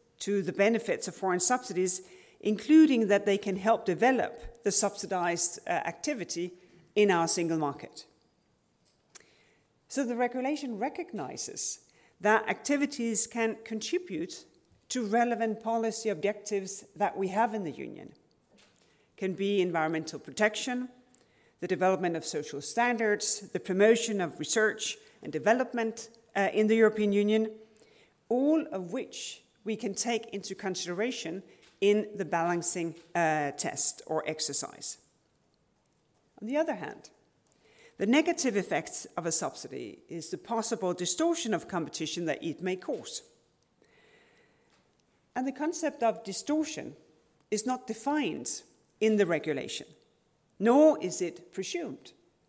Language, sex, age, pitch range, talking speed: English, female, 50-69, 185-245 Hz, 125 wpm